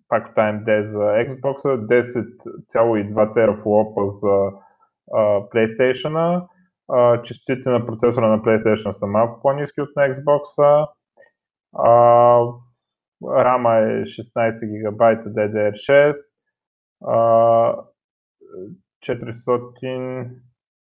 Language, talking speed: Bulgarian, 75 wpm